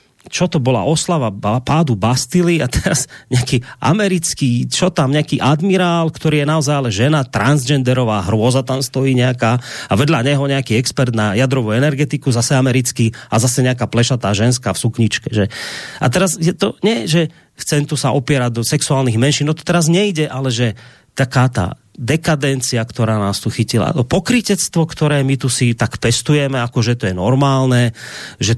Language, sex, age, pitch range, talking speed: Slovak, male, 30-49, 125-170 Hz, 170 wpm